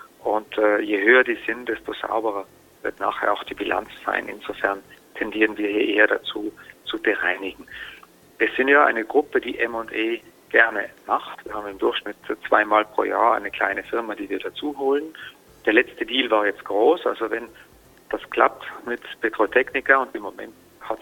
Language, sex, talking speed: German, male, 175 wpm